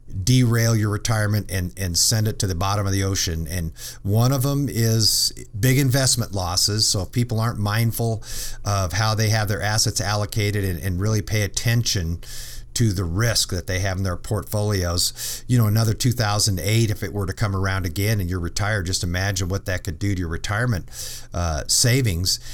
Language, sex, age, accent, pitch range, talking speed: English, male, 50-69, American, 100-120 Hz, 190 wpm